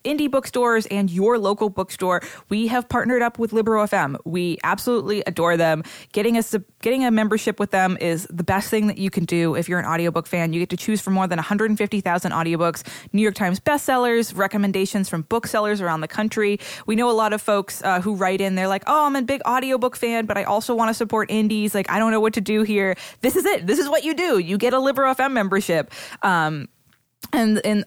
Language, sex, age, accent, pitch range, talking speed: English, female, 20-39, American, 175-225 Hz, 230 wpm